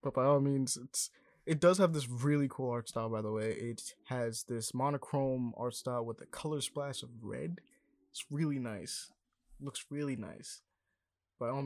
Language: English